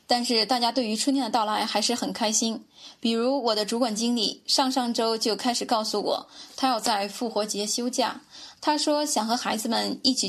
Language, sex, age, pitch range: Chinese, female, 10-29, 215-265 Hz